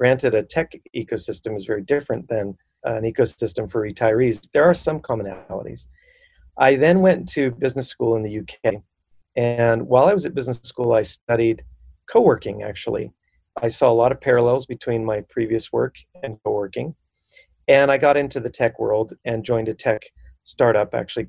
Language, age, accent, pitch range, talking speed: English, 40-59, American, 110-135 Hz, 170 wpm